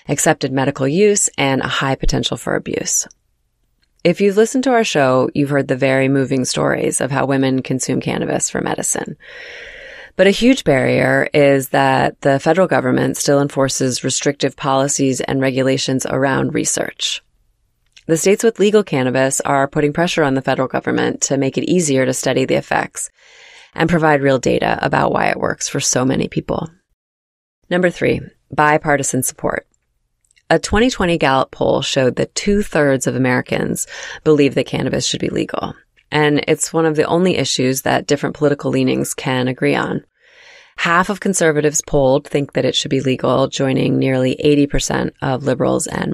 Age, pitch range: 20-39, 135-165 Hz